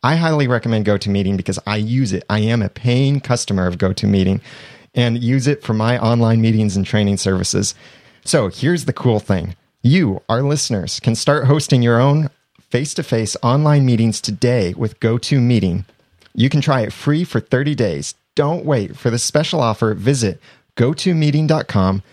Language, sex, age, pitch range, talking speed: English, male, 30-49, 105-135 Hz, 165 wpm